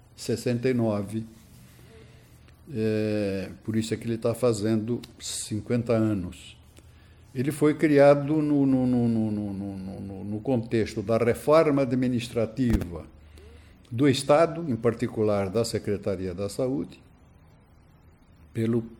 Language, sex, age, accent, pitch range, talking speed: Portuguese, male, 60-79, Brazilian, 95-120 Hz, 105 wpm